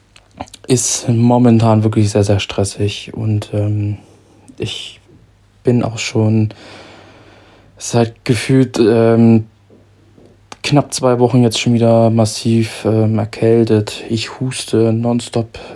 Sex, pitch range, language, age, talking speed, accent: male, 105-115 Hz, German, 20-39, 105 wpm, German